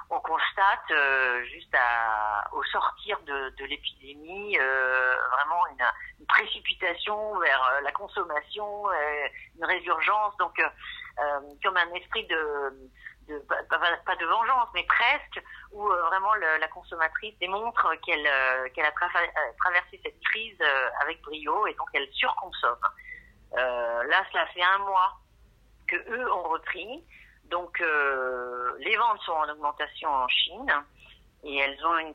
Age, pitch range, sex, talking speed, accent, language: 40-59, 135-190 Hz, female, 155 wpm, French, French